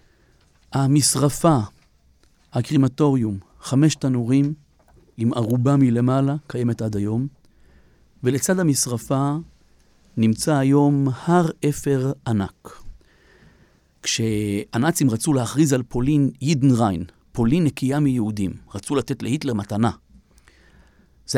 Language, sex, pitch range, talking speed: Hebrew, male, 120-160 Hz, 85 wpm